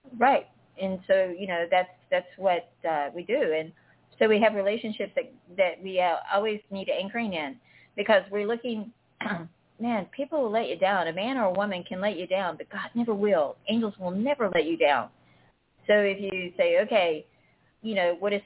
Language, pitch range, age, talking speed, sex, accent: English, 175-230 Hz, 50-69, 195 wpm, female, American